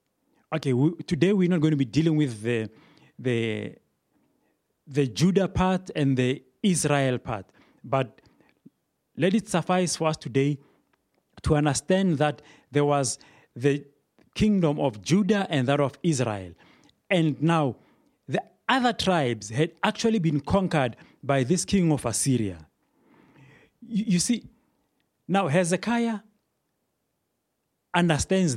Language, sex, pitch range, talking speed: English, male, 135-185 Hz, 120 wpm